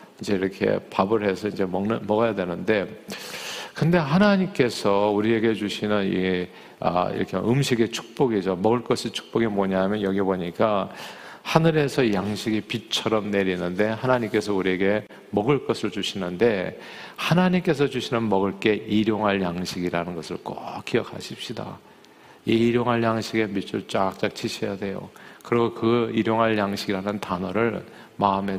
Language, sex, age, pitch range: Korean, male, 50-69, 100-130 Hz